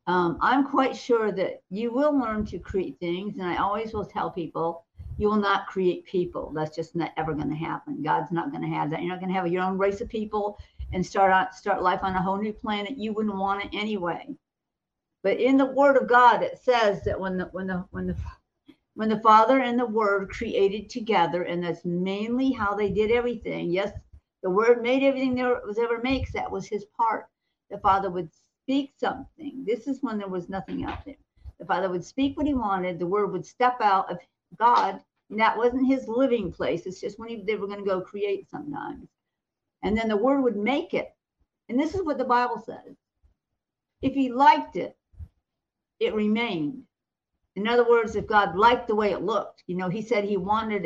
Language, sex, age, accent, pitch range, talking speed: English, female, 50-69, American, 190-245 Hz, 215 wpm